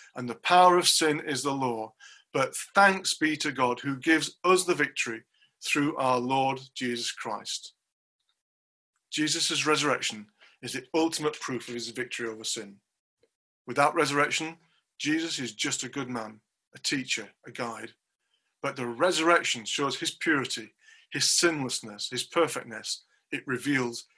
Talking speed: 145 wpm